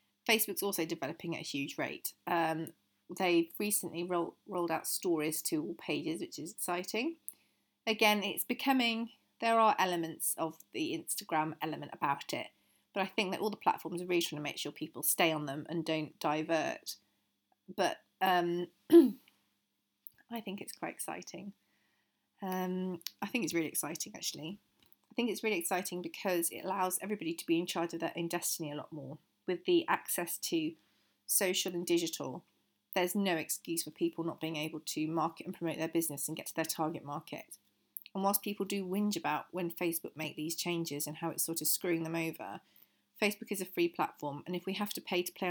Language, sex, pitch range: English, female, 160-195 Hz